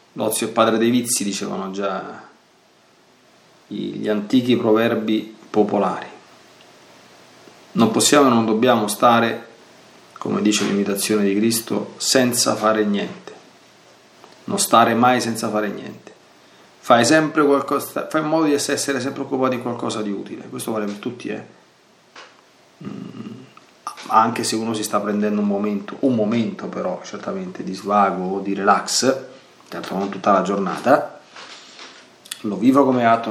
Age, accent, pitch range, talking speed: 40-59, native, 105-120 Hz, 135 wpm